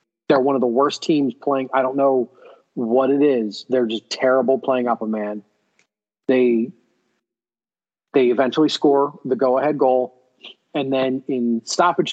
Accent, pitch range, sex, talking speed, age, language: American, 120-145 Hz, male, 160 wpm, 30-49, English